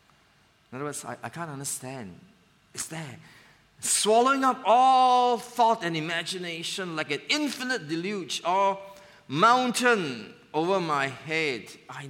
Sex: male